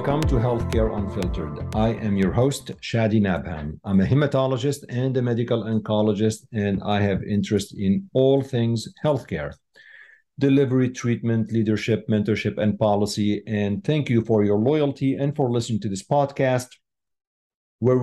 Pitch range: 100-130 Hz